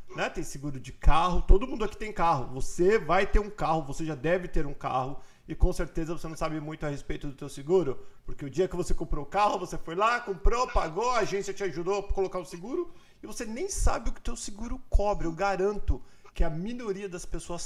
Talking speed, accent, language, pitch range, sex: 240 wpm, Brazilian, Portuguese, 160-200 Hz, male